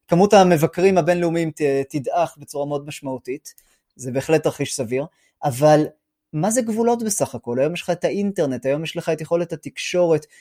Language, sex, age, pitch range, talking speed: Hebrew, male, 30-49, 145-180 Hz, 160 wpm